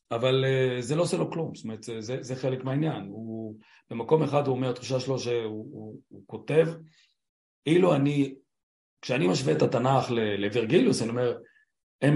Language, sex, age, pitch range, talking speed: Hebrew, male, 40-59, 110-140 Hz, 160 wpm